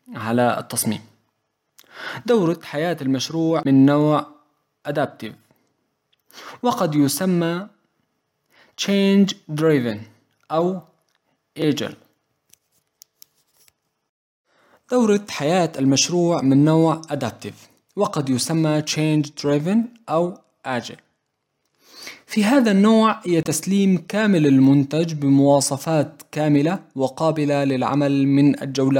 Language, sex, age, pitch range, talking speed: Arabic, male, 20-39, 135-165 Hz, 80 wpm